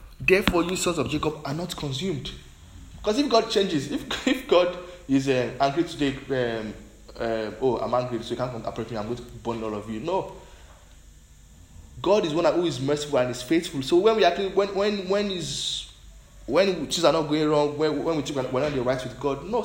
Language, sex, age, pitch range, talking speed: English, male, 20-39, 110-155 Hz, 215 wpm